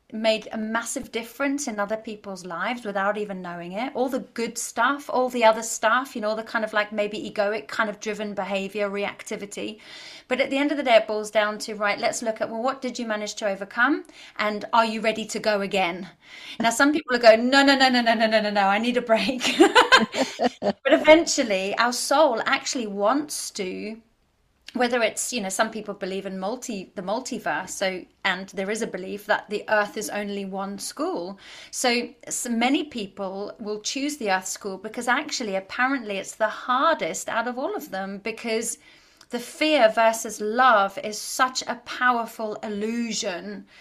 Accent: British